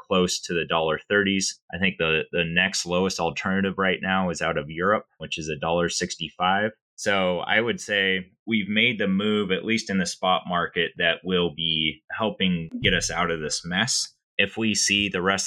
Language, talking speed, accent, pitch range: English, 205 wpm, American, 80-95 Hz